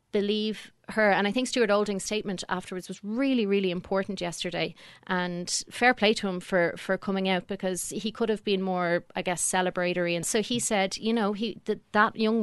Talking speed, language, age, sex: 205 wpm, English, 30-49, female